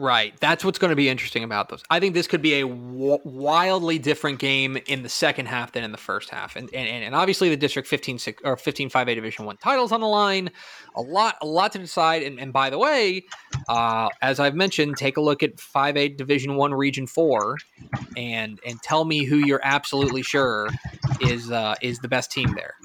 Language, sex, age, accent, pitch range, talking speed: English, male, 20-39, American, 125-155 Hz, 225 wpm